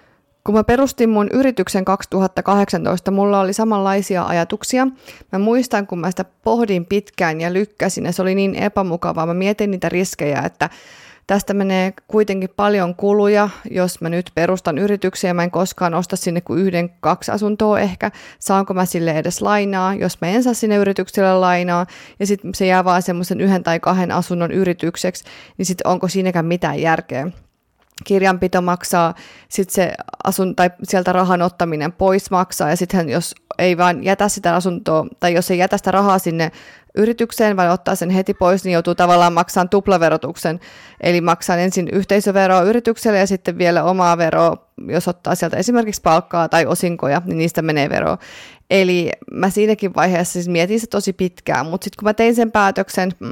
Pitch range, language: 175-200 Hz, Finnish